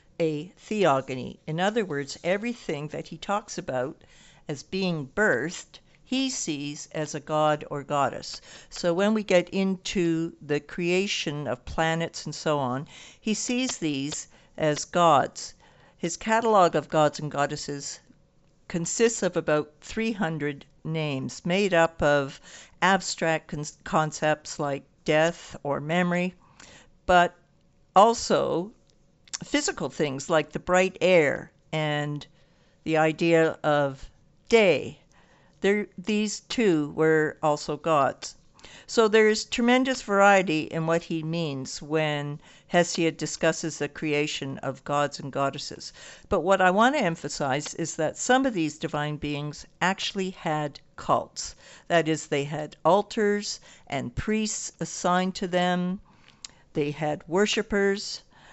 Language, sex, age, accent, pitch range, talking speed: English, female, 60-79, American, 150-185 Hz, 125 wpm